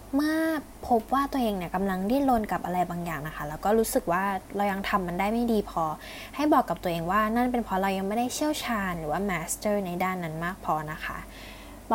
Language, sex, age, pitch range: Thai, female, 10-29, 185-245 Hz